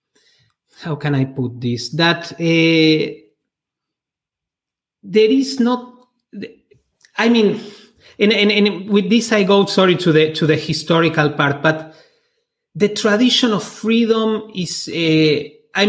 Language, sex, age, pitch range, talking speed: English, male, 30-49, 145-200 Hz, 130 wpm